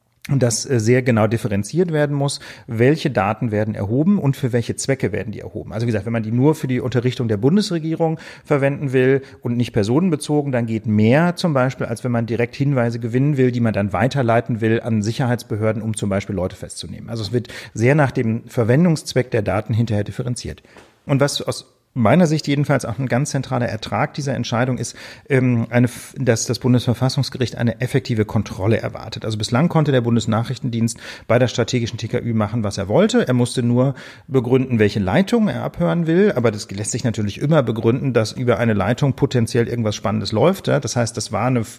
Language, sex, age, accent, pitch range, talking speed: German, male, 40-59, German, 115-135 Hz, 190 wpm